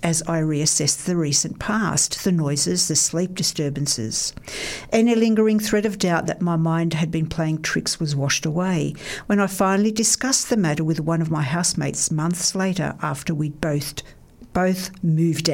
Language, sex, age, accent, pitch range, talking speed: English, female, 60-79, Australian, 155-195 Hz, 170 wpm